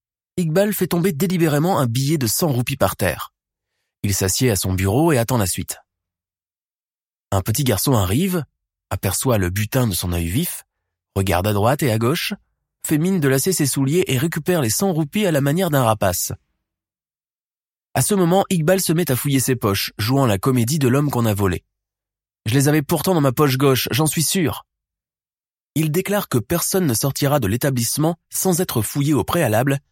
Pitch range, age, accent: 110-165 Hz, 20-39, French